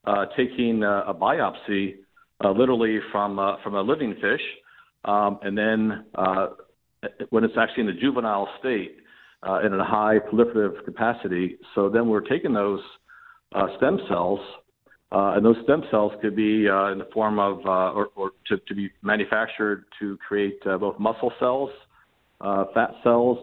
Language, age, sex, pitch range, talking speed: English, 50-69, male, 100-115 Hz, 170 wpm